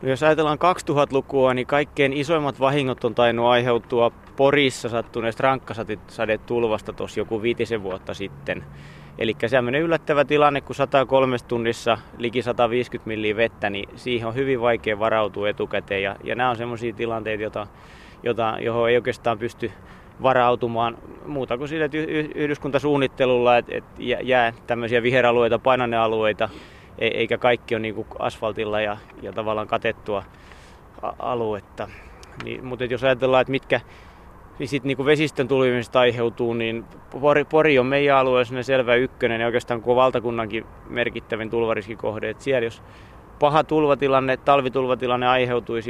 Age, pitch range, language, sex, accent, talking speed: 20-39, 115-130 Hz, Finnish, male, native, 130 wpm